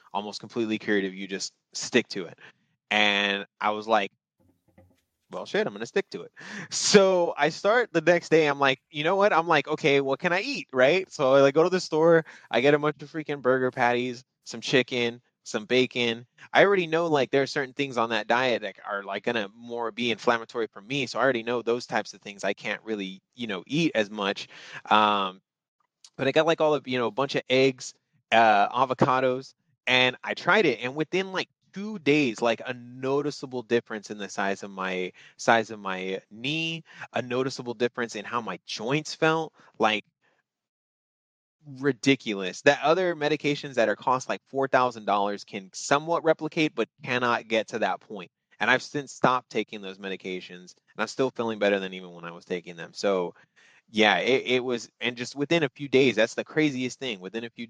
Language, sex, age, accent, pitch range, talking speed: English, male, 20-39, American, 105-145 Hz, 205 wpm